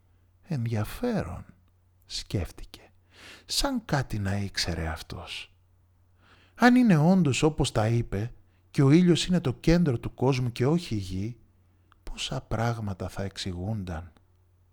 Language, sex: Greek, male